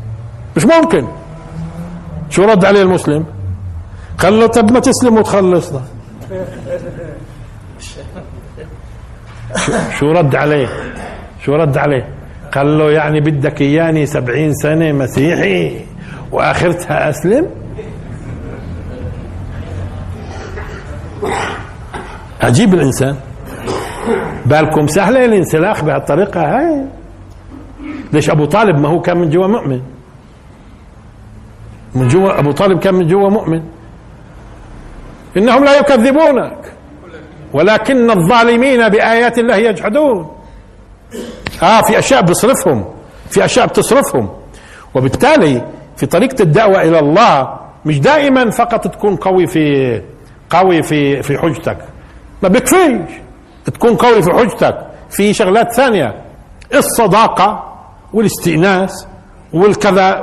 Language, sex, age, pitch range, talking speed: Arabic, male, 60-79, 130-210 Hz, 95 wpm